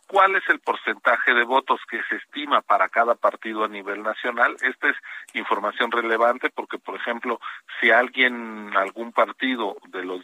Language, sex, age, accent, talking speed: Spanish, male, 50-69, Mexican, 165 wpm